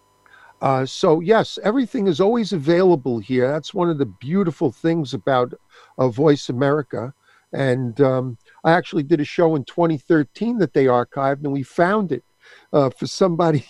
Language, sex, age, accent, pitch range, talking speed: English, male, 50-69, American, 135-170 Hz, 160 wpm